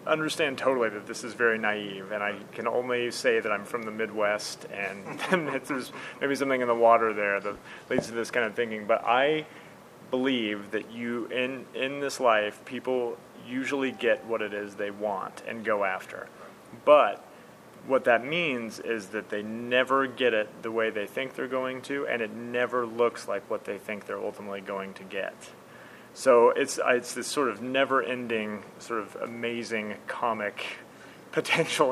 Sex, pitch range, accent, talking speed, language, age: male, 105-130 Hz, American, 175 wpm, English, 30-49